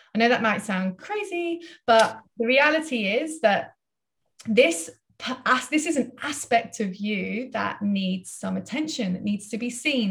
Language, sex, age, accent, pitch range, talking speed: English, female, 20-39, British, 205-260 Hz, 160 wpm